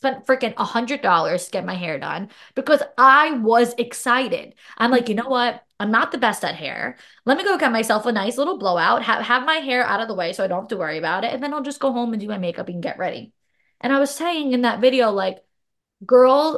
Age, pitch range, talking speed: 20-39, 185-245 Hz, 250 wpm